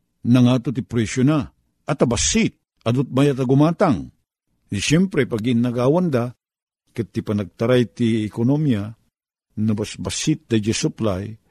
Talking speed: 130 wpm